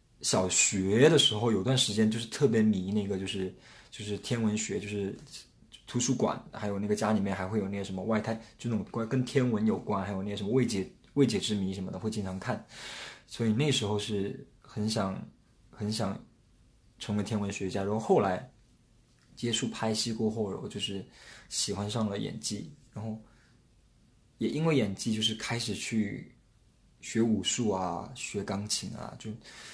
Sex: male